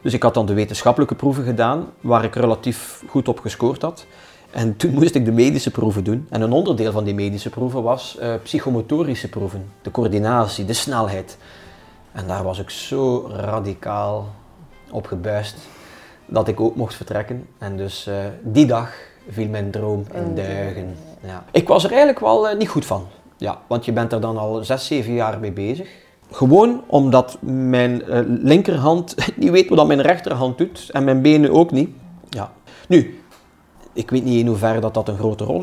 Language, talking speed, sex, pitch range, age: Dutch, 180 wpm, male, 105-135 Hz, 30-49